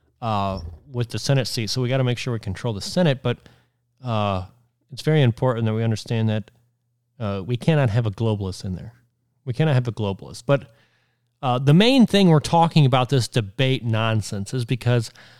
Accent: American